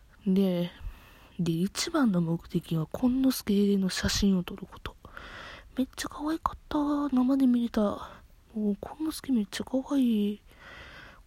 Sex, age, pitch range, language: female, 20-39, 175-240 Hz, Japanese